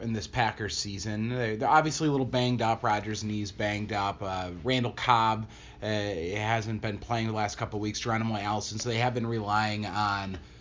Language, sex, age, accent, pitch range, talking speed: English, male, 30-49, American, 105-125 Hz, 200 wpm